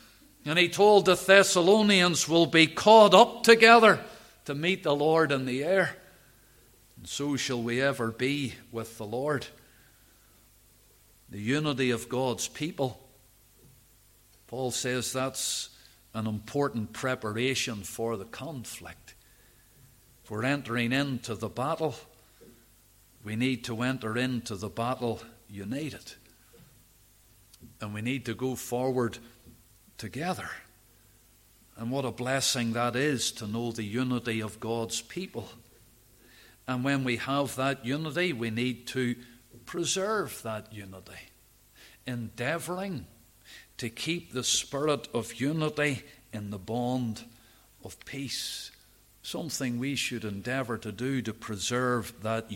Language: English